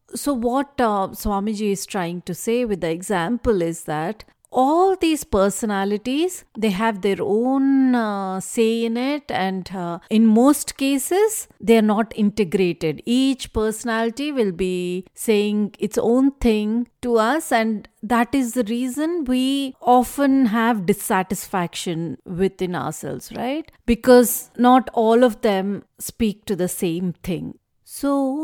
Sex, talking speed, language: female, 140 wpm, English